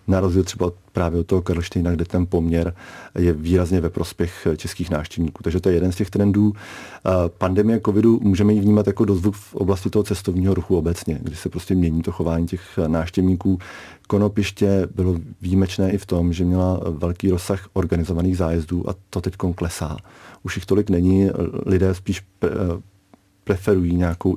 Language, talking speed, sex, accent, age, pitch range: Czech, 165 wpm, male, native, 40-59, 85-100 Hz